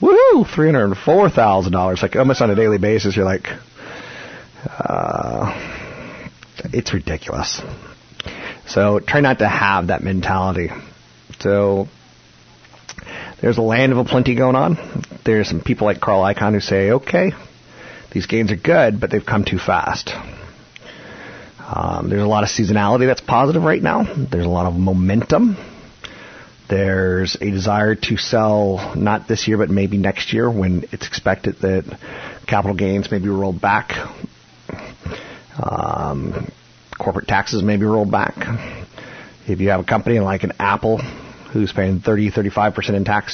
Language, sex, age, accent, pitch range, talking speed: English, male, 40-59, American, 95-115 Hz, 145 wpm